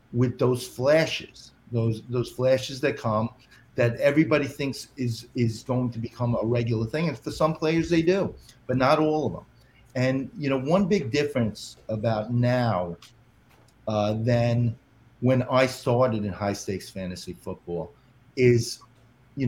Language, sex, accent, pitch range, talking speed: English, male, American, 110-135 Hz, 155 wpm